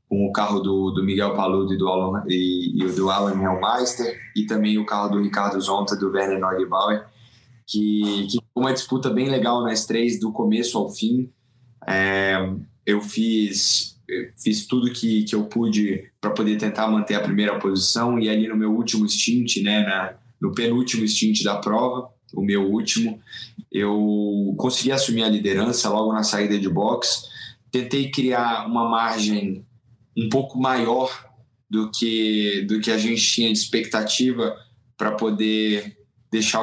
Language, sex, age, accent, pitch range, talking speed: Portuguese, male, 10-29, Brazilian, 105-120 Hz, 160 wpm